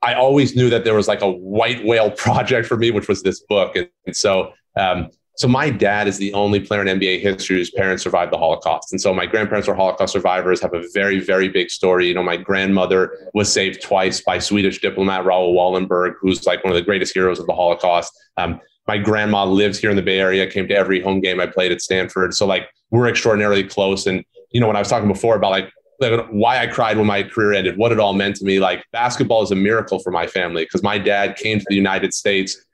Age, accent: 30-49, American